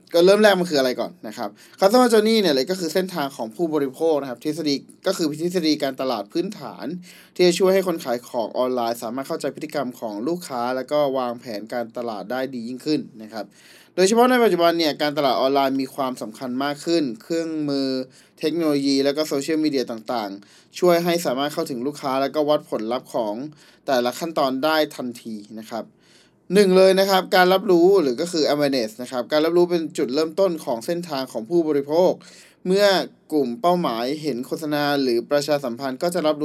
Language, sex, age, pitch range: Thai, male, 20-39, 130-170 Hz